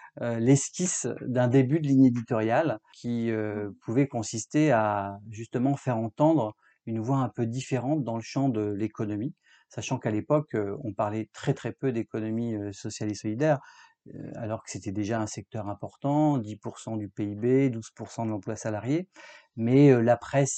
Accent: French